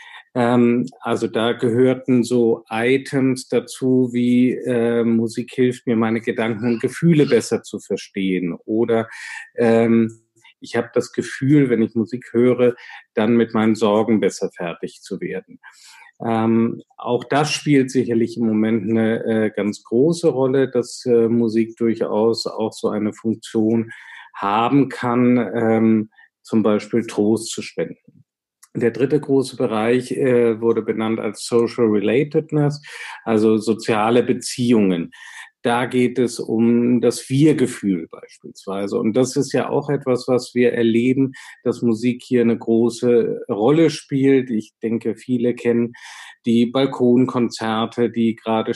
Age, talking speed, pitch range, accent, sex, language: 50-69, 135 wpm, 115-125 Hz, German, male, German